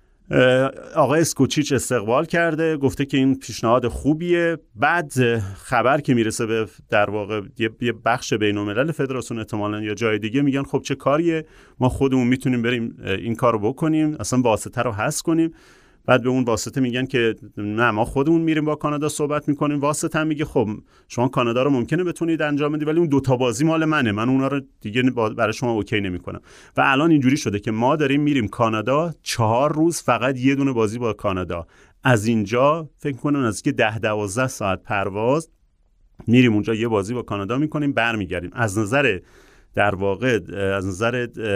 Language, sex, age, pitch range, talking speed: Persian, male, 30-49, 110-140 Hz, 180 wpm